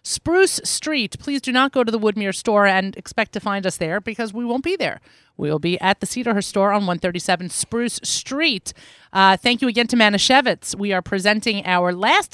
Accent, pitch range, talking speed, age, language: American, 185-240 Hz, 210 wpm, 30-49, English